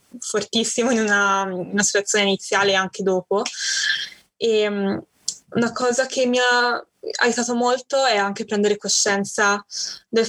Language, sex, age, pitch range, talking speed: Italian, female, 20-39, 200-225 Hz, 115 wpm